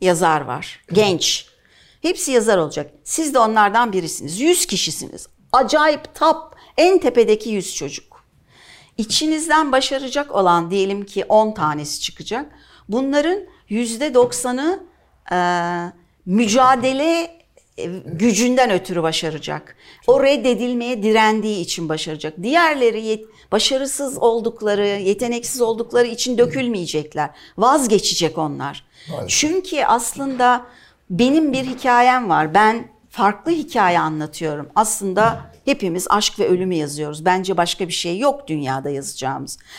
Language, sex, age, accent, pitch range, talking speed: Turkish, female, 60-79, native, 180-275 Hz, 105 wpm